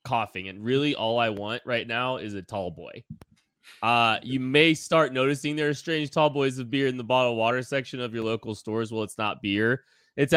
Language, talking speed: English, 220 wpm